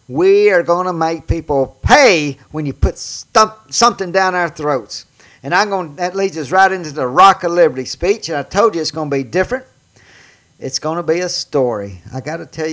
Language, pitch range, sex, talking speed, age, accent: English, 125-170 Hz, male, 225 wpm, 50-69, American